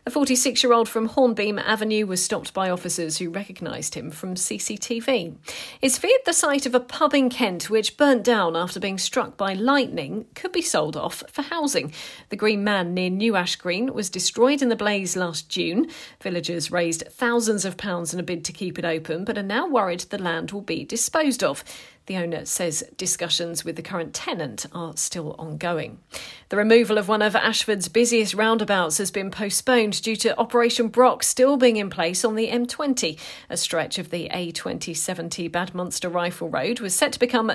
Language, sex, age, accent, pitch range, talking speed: English, female, 40-59, British, 175-235 Hz, 190 wpm